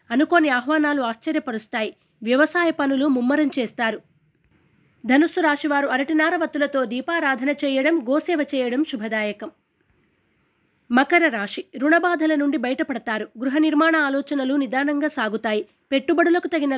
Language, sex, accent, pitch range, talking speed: Telugu, female, native, 245-305 Hz, 105 wpm